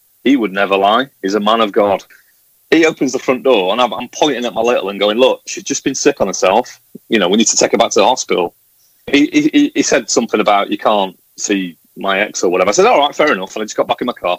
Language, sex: English, male